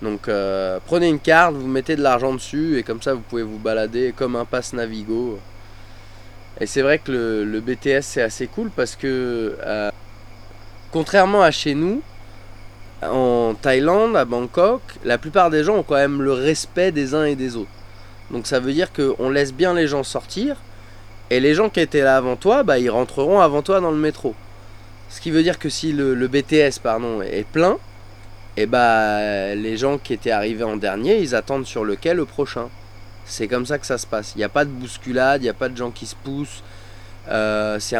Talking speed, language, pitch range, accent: 210 wpm, French, 105-145 Hz, French